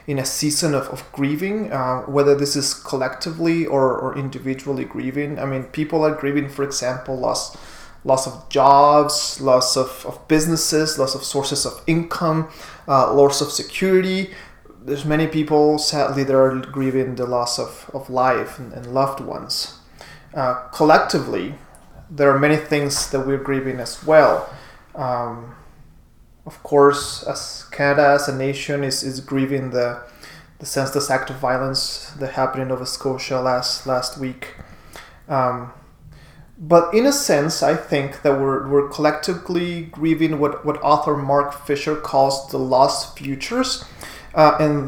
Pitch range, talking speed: 130-155 Hz, 150 wpm